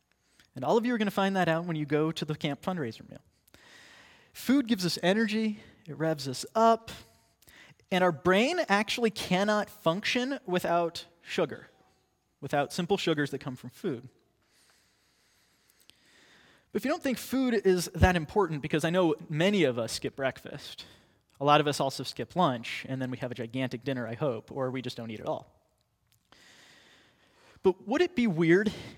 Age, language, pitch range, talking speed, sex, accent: 20-39, English, 130-175 Hz, 180 wpm, male, American